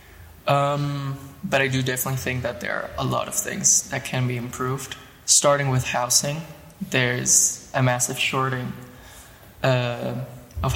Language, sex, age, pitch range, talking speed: Dutch, male, 20-39, 120-140 Hz, 145 wpm